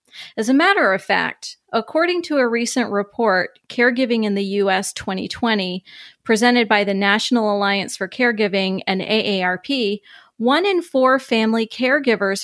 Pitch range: 200-260 Hz